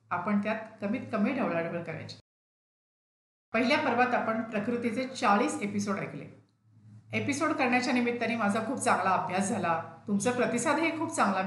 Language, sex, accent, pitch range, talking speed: Marathi, female, native, 180-230 Hz, 130 wpm